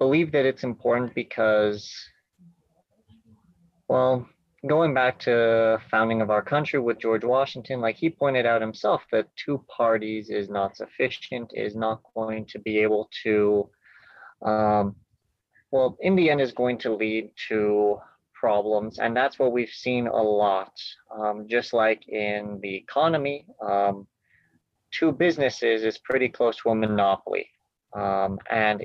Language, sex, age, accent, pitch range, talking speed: English, male, 30-49, American, 105-130 Hz, 145 wpm